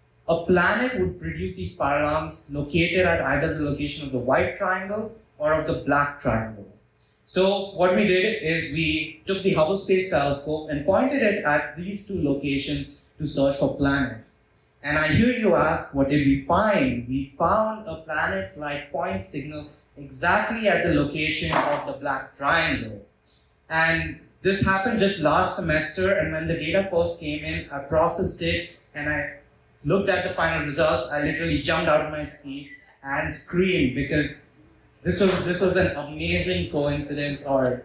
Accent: Indian